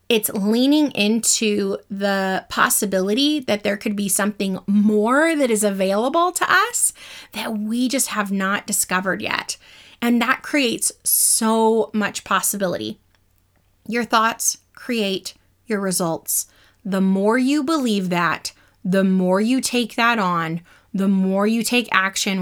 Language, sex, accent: English, female, American